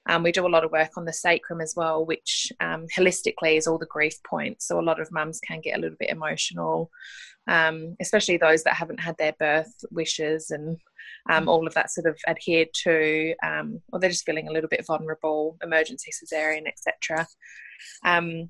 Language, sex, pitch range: English, female, 160-185 Hz